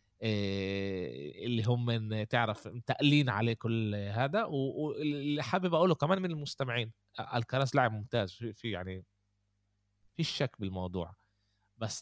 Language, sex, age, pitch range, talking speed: Arabic, male, 20-39, 100-125 Hz, 115 wpm